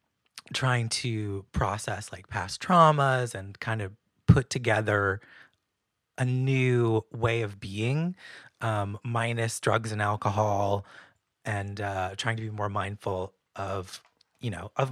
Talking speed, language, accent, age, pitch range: 130 wpm, English, American, 20-39, 105-125 Hz